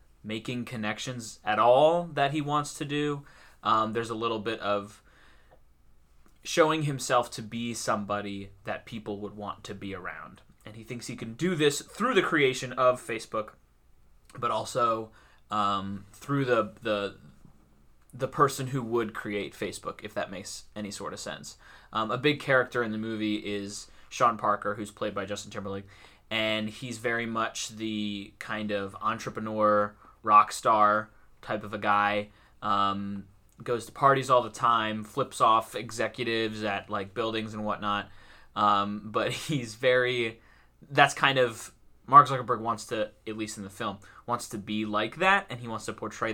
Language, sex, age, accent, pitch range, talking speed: English, male, 20-39, American, 100-120 Hz, 165 wpm